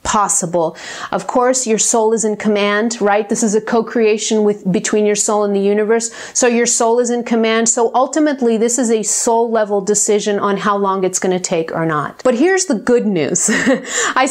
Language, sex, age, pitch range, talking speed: English, female, 30-49, 210-265 Hz, 205 wpm